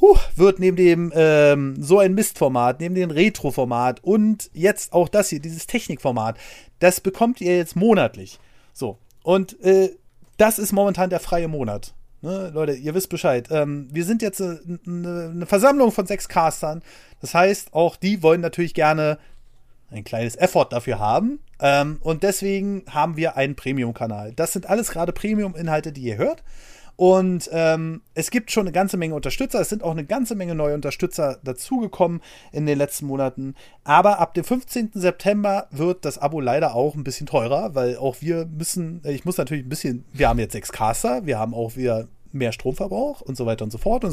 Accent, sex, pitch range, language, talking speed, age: German, male, 135-185 Hz, German, 185 wpm, 30-49